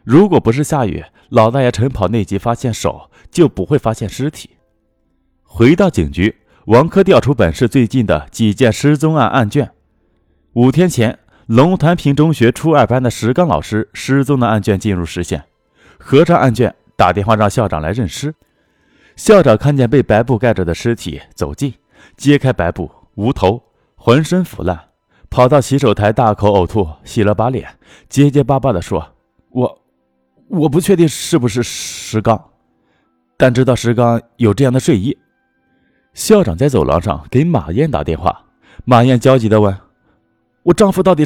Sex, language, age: male, Chinese, 30-49